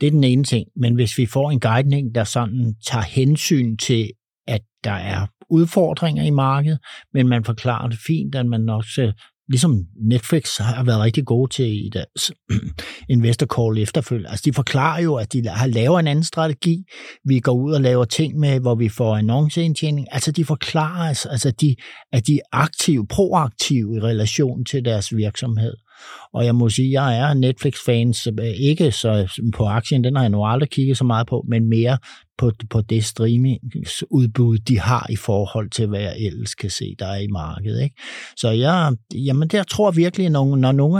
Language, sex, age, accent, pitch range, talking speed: Danish, male, 60-79, native, 110-140 Hz, 195 wpm